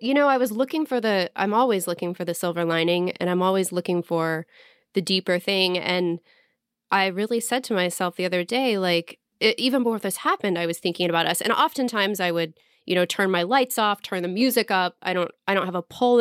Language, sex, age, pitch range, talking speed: English, female, 20-39, 175-220 Hz, 230 wpm